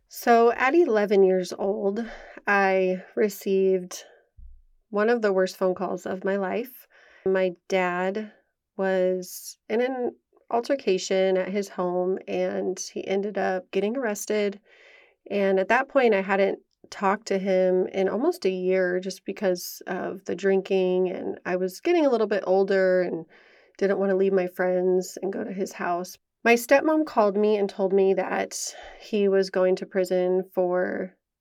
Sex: female